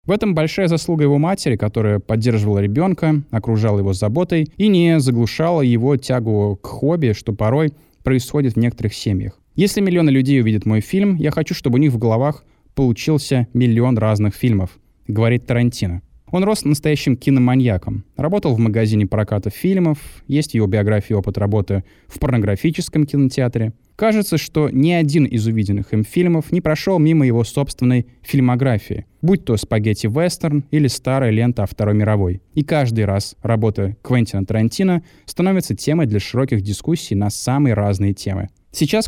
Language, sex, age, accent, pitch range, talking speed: Russian, male, 20-39, native, 110-150 Hz, 155 wpm